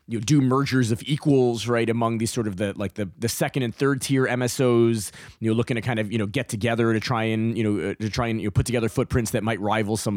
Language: English